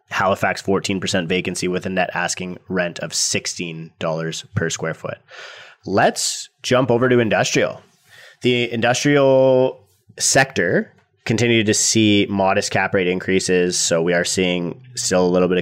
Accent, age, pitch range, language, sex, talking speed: American, 30-49, 85-110 Hz, English, male, 140 wpm